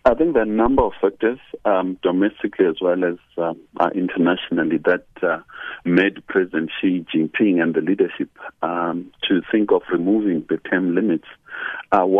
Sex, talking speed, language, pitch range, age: male, 160 wpm, English, 90-115 Hz, 60-79